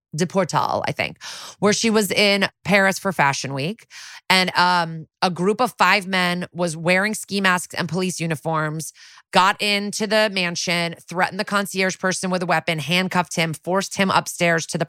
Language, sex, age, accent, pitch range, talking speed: English, female, 20-39, American, 165-200 Hz, 175 wpm